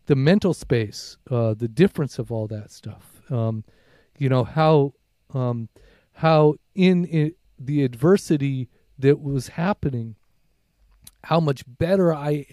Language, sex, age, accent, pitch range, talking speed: English, male, 30-49, American, 115-140 Hz, 125 wpm